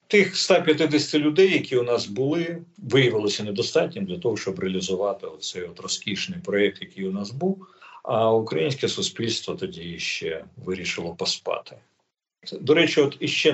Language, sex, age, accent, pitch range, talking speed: Ukrainian, male, 50-69, native, 110-180 Hz, 140 wpm